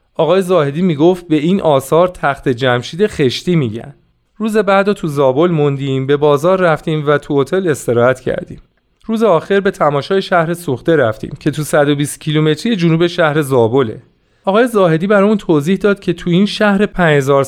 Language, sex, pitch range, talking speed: Persian, male, 140-185 Hz, 165 wpm